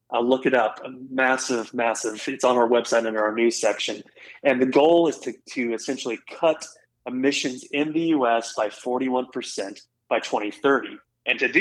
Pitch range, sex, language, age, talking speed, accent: 115-145 Hz, male, English, 30-49, 160 wpm, American